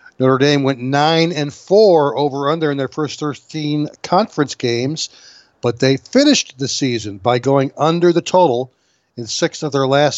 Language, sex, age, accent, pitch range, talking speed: English, male, 60-79, American, 135-165 Hz, 155 wpm